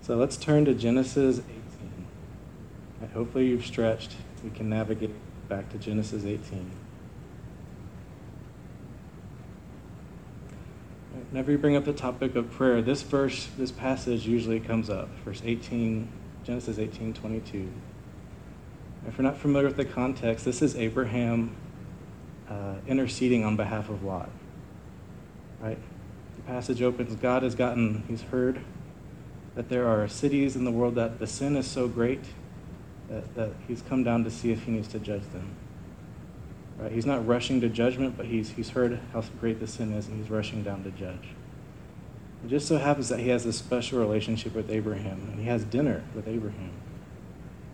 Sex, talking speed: male, 155 wpm